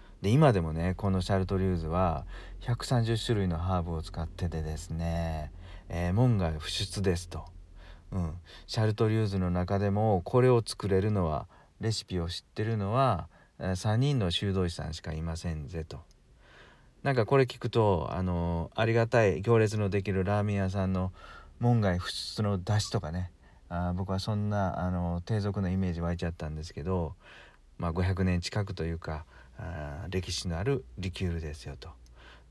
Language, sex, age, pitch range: Japanese, male, 40-59, 85-110 Hz